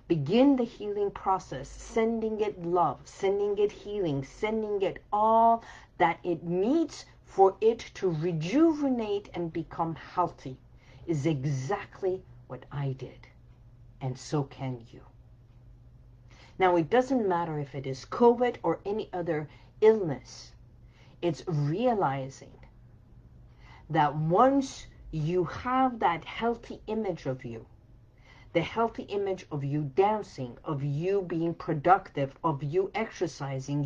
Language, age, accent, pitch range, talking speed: English, 50-69, American, 130-195 Hz, 120 wpm